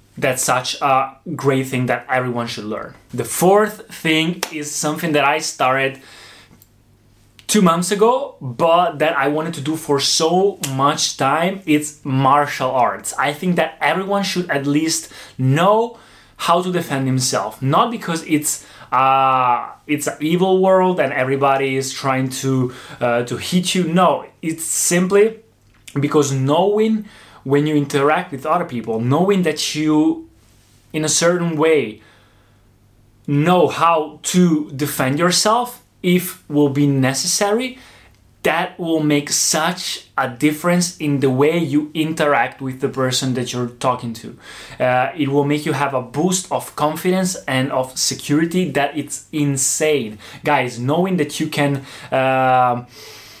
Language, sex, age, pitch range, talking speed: Italian, male, 20-39, 130-165 Hz, 145 wpm